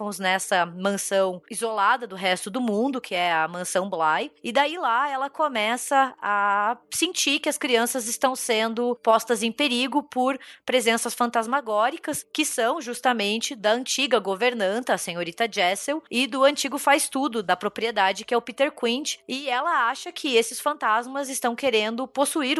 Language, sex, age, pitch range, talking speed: Portuguese, female, 20-39, 200-265 Hz, 155 wpm